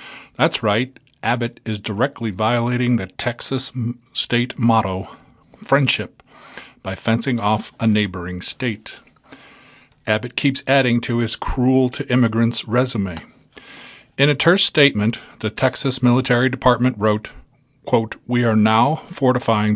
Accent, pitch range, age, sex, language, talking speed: American, 110-135 Hz, 50-69, male, English, 120 wpm